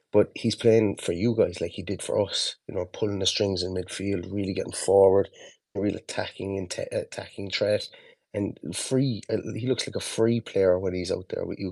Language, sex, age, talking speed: English, male, 20-39, 205 wpm